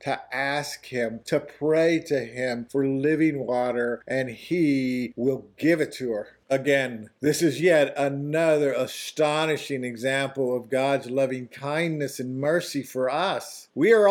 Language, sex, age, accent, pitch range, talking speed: English, male, 50-69, American, 135-180 Hz, 145 wpm